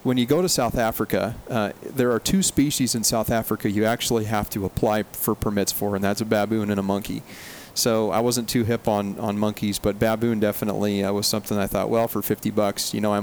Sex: male